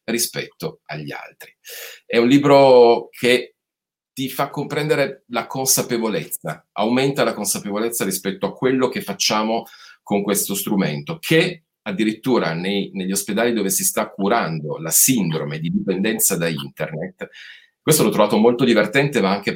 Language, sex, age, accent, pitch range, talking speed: Italian, male, 40-59, native, 95-135 Hz, 135 wpm